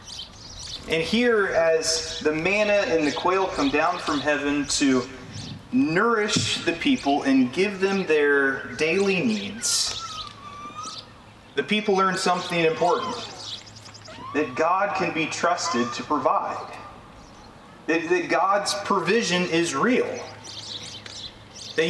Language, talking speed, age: English, 110 wpm, 30-49